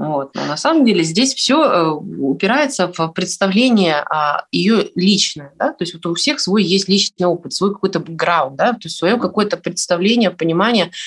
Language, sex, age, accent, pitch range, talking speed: Russian, female, 20-39, native, 150-195 Hz, 175 wpm